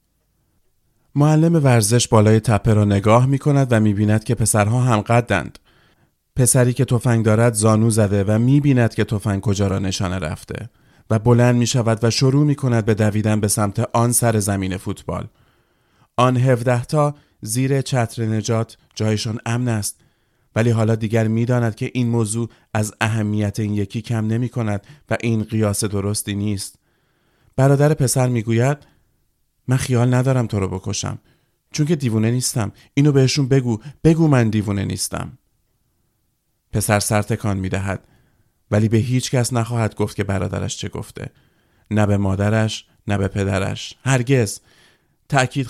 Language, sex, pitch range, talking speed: Persian, male, 105-125 Hz, 155 wpm